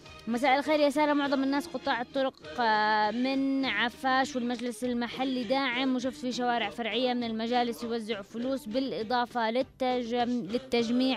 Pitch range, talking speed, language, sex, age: 230-270 Hz, 120 wpm, English, female, 20-39